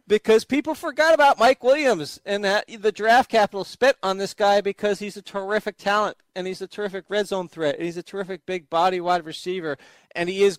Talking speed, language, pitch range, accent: 215 wpm, English, 150-190 Hz, American